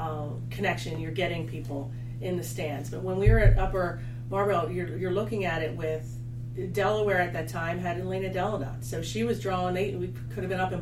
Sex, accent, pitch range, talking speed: female, American, 120-150 Hz, 210 wpm